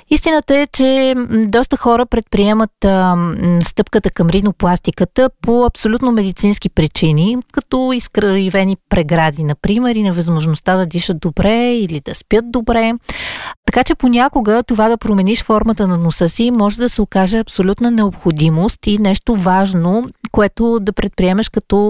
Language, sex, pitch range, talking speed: Bulgarian, female, 175-225 Hz, 140 wpm